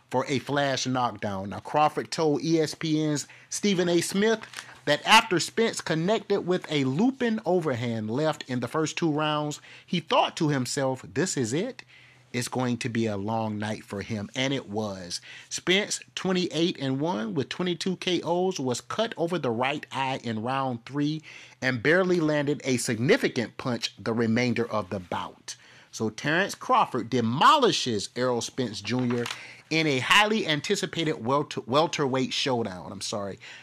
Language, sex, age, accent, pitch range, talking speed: English, male, 30-49, American, 115-155 Hz, 150 wpm